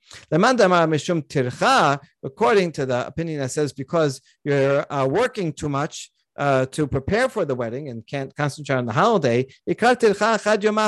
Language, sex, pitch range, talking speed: English, male, 140-195 Hz, 130 wpm